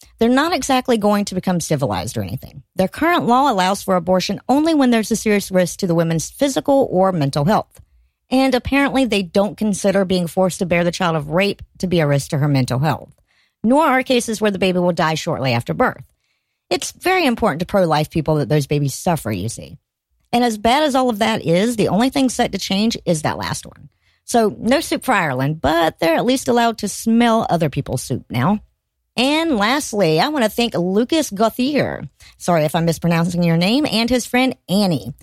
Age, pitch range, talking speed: 50-69, 155-235 Hz, 210 wpm